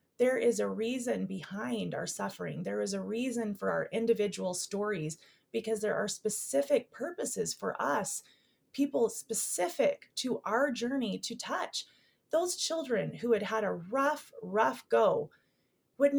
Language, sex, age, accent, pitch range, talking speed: English, female, 30-49, American, 190-245 Hz, 145 wpm